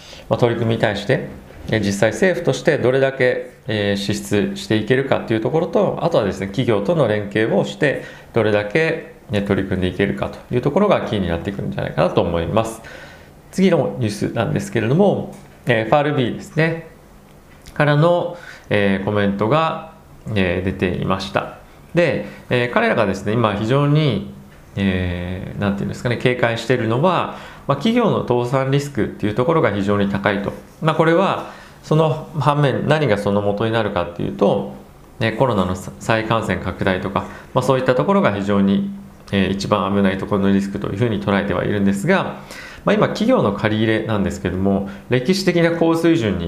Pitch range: 100-135 Hz